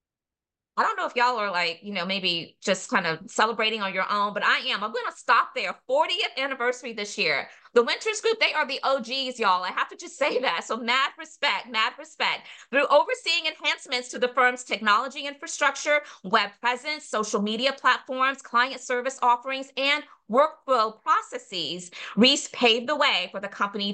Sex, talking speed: female, 185 wpm